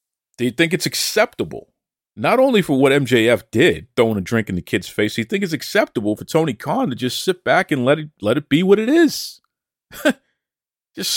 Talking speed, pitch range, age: 205 wpm, 145-220 Hz, 50-69